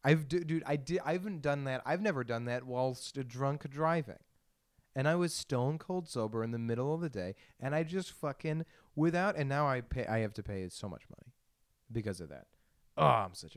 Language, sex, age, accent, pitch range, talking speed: English, male, 30-49, American, 105-155 Hz, 225 wpm